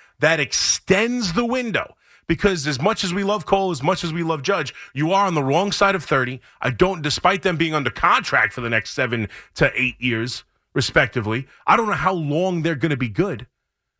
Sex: male